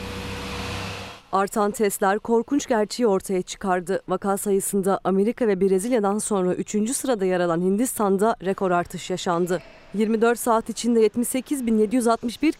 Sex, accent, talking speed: female, native, 115 wpm